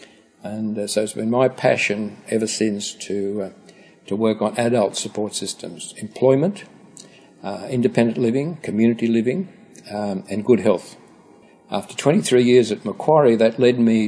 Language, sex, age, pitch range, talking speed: English, male, 60-79, 100-120 Hz, 145 wpm